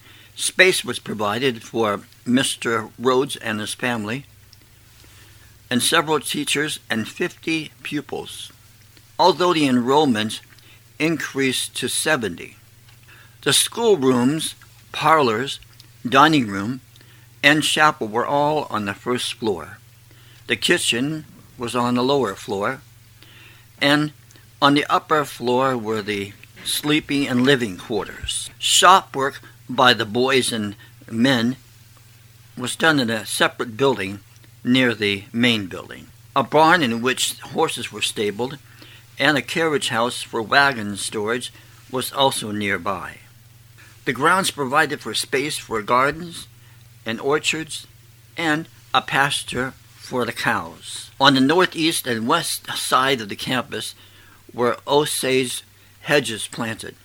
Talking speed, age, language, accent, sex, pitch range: 120 wpm, 60-79, English, American, male, 110-135 Hz